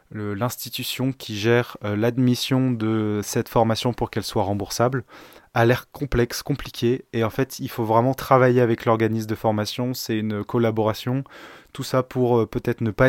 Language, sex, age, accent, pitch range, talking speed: French, male, 20-39, French, 110-125 Hz, 175 wpm